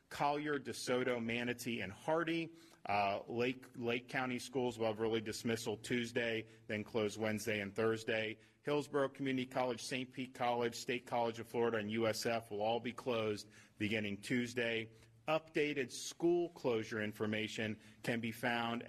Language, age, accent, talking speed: English, 40-59, American, 145 wpm